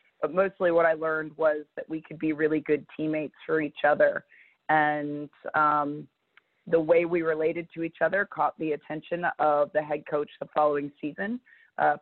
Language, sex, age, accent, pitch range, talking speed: English, female, 30-49, American, 155-170 Hz, 180 wpm